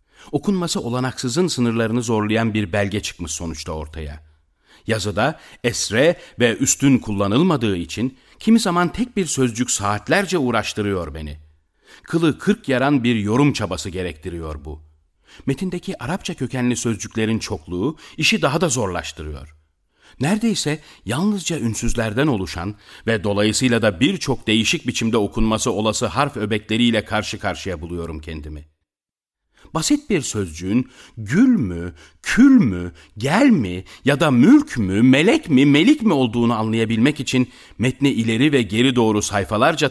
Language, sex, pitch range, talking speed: Turkish, male, 90-135 Hz, 125 wpm